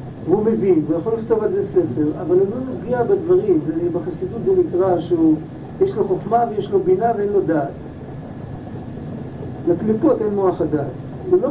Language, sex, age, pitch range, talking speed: Hebrew, male, 50-69, 160-230 Hz, 165 wpm